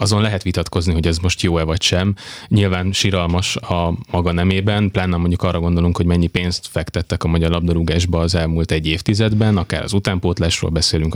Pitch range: 85-100 Hz